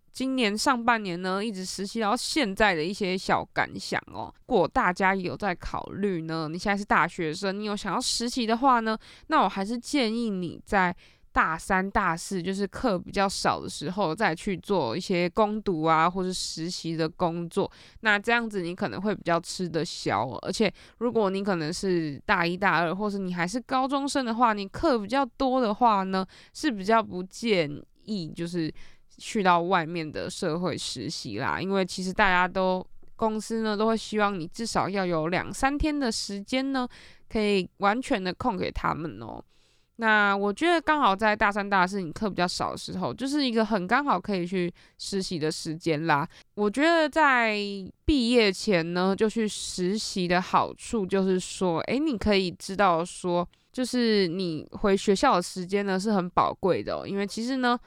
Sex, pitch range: female, 180-225 Hz